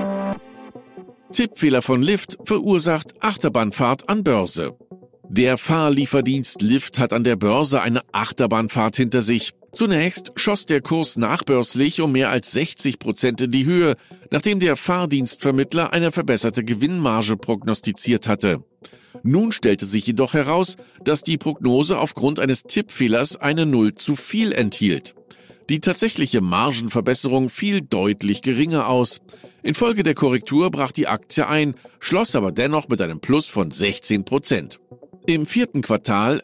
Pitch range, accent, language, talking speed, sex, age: 120-175 Hz, German, German, 130 wpm, male, 50-69